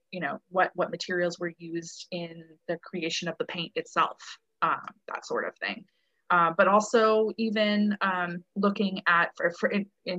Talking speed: 175 wpm